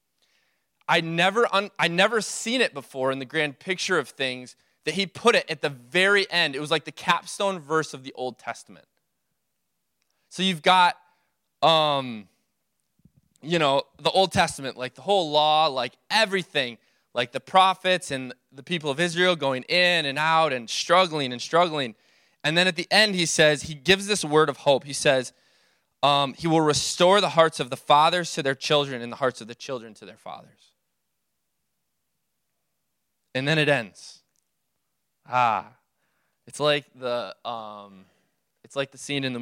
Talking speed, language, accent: 170 wpm, English, American